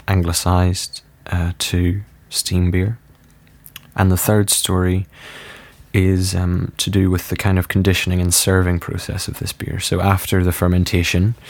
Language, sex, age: English, male, 20-39